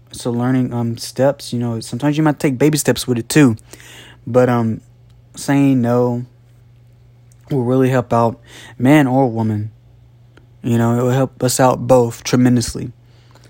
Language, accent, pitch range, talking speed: English, American, 120-130 Hz, 155 wpm